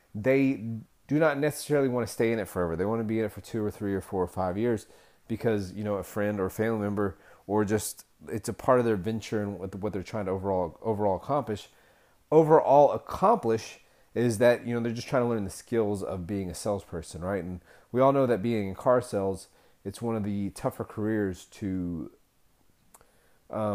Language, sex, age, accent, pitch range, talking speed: English, male, 30-49, American, 95-115 Hz, 215 wpm